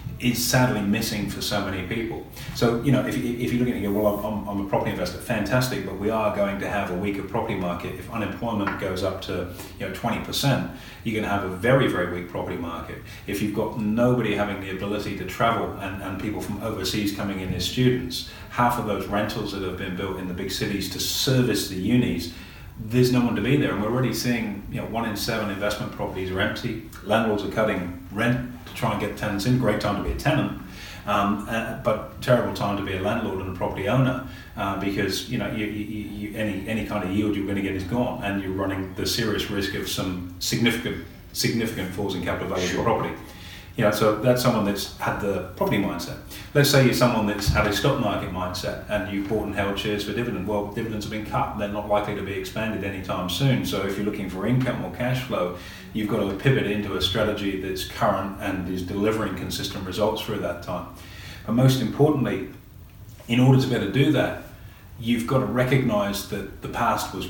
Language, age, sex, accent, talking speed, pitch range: English, 30-49, male, British, 230 wpm, 95-115 Hz